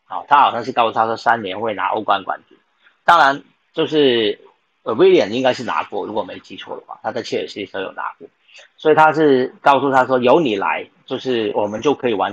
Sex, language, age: male, Chinese, 40-59